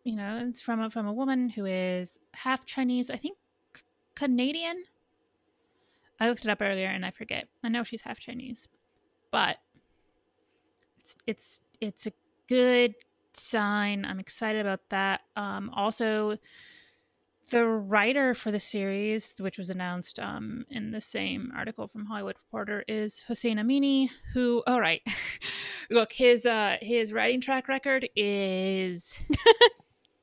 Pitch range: 195-240 Hz